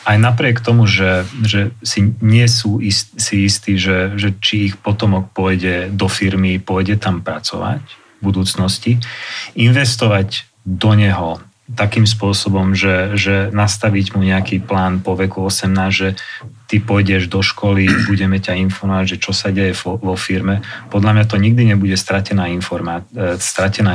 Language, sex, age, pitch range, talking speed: Slovak, male, 30-49, 95-110 Hz, 155 wpm